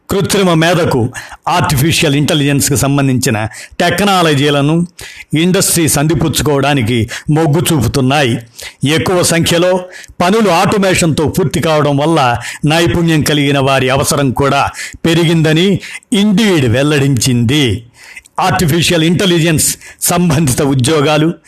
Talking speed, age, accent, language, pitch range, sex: 80 wpm, 60-79, native, Telugu, 130-165 Hz, male